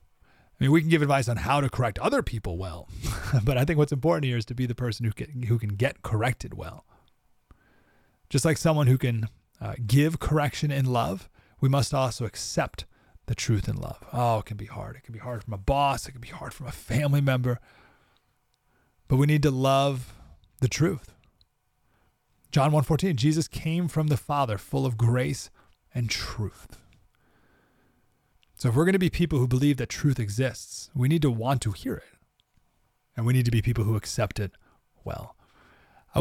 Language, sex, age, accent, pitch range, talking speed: English, male, 30-49, American, 115-150 Hz, 195 wpm